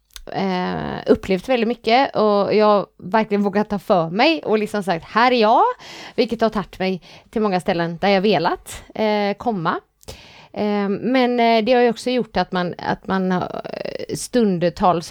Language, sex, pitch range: Swedish, female, 185-235 Hz